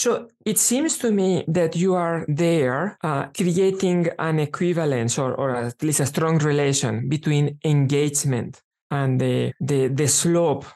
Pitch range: 140-170 Hz